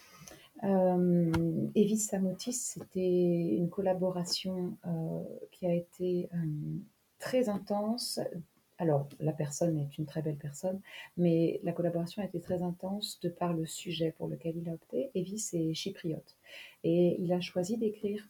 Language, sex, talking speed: French, female, 150 wpm